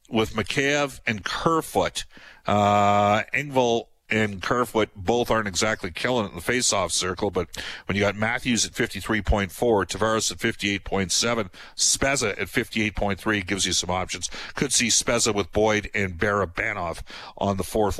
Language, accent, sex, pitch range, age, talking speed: English, American, male, 100-115 Hz, 50-69, 145 wpm